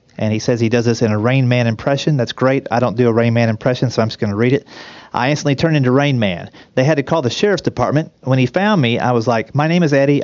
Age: 40-59